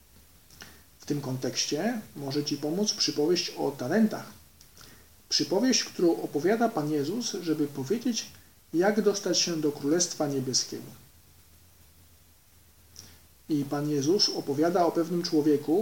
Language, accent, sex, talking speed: Polish, native, male, 110 wpm